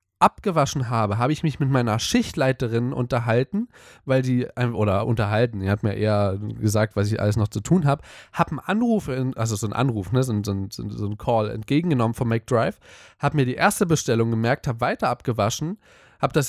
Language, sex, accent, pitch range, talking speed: German, male, German, 110-140 Hz, 195 wpm